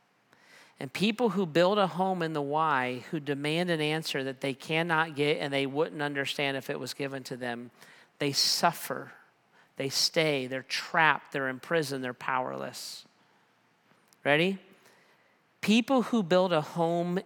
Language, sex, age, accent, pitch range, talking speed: English, male, 40-59, American, 140-175 Hz, 155 wpm